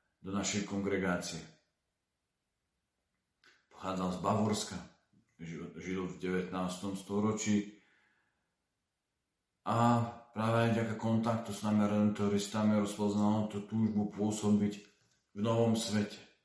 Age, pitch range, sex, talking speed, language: 40-59, 95-110 Hz, male, 90 wpm, Slovak